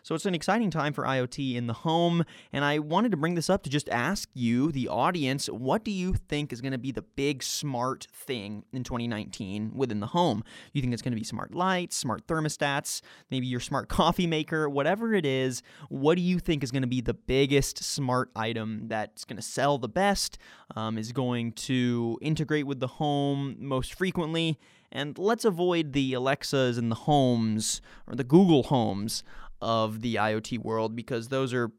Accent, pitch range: American, 120-165 Hz